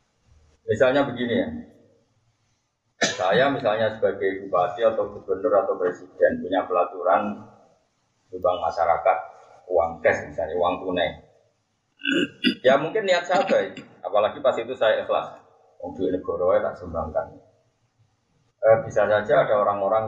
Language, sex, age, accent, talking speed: Indonesian, male, 30-49, native, 115 wpm